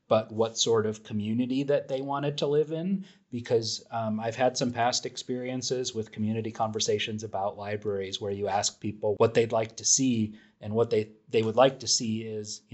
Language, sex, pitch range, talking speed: English, male, 105-115 Hz, 195 wpm